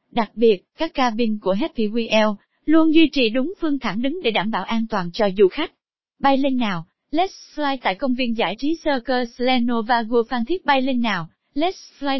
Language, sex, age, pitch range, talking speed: Vietnamese, female, 20-39, 220-285 Hz, 200 wpm